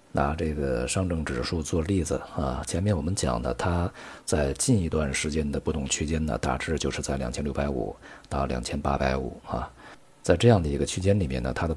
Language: Chinese